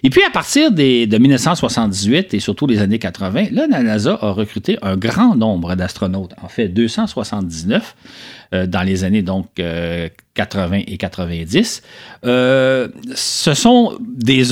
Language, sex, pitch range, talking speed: French, male, 95-145 Hz, 155 wpm